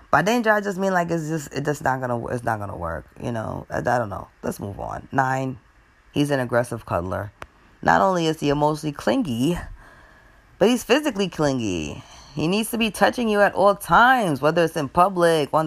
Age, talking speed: 20-39, 200 wpm